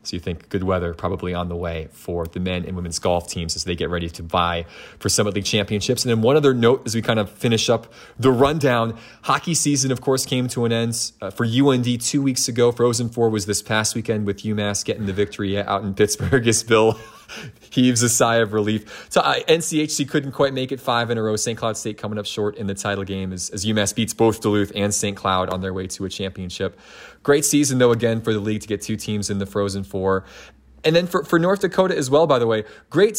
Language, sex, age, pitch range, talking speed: English, male, 30-49, 105-135 Hz, 250 wpm